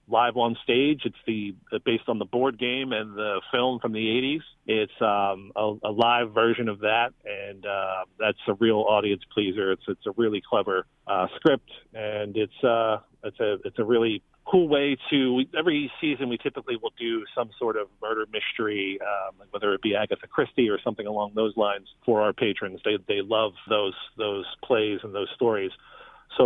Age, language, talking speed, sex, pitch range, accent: 40-59, English, 190 wpm, male, 105-135 Hz, American